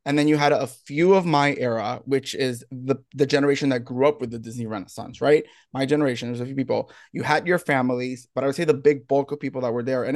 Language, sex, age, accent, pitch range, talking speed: English, male, 20-39, American, 130-155 Hz, 265 wpm